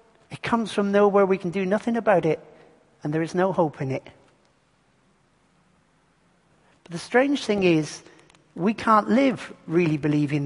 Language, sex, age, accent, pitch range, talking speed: English, male, 50-69, British, 165-235 Hz, 155 wpm